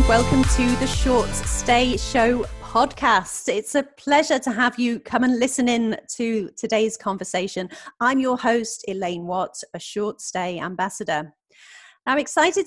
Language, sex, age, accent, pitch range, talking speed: English, female, 30-49, British, 180-245 Hz, 145 wpm